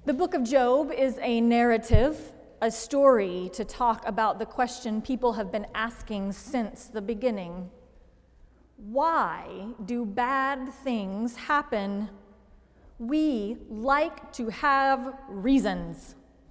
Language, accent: English, American